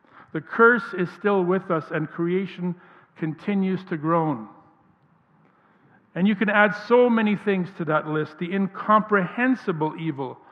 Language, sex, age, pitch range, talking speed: English, male, 50-69, 170-220 Hz, 135 wpm